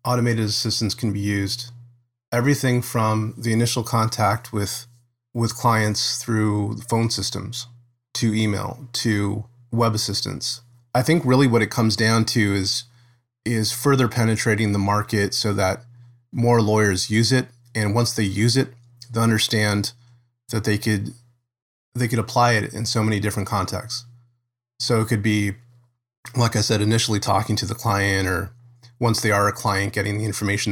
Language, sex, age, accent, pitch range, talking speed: English, male, 30-49, American, 105-120 Hz, 160 wpm